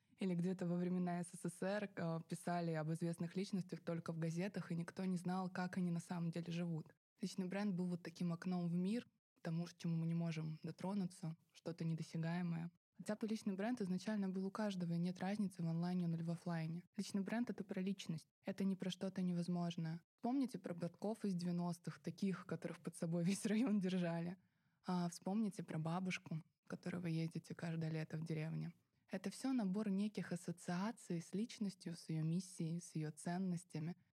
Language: Russian